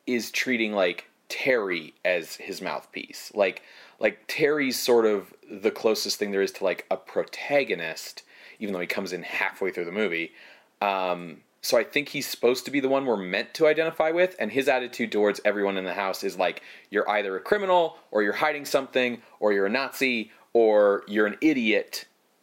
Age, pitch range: 30-49, 100-135 Hz